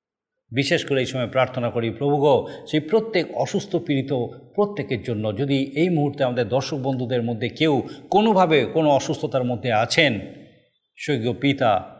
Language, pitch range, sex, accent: Bengali, 120-150 Hz, male, native